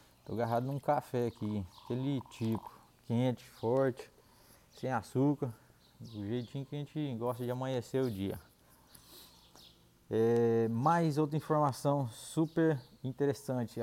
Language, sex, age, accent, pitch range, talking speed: Portuguese, male, 20-39, Brazilian, 110-130 Hz, 115 wpm